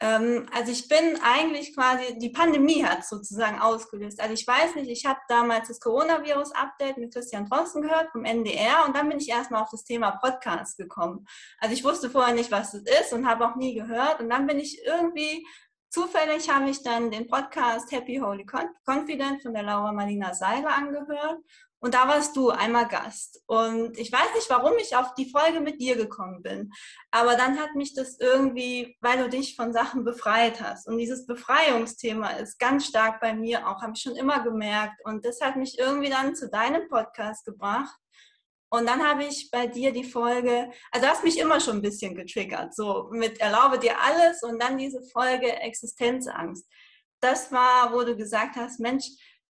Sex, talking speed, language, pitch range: female, 190 wpm, German, 225-275 Hz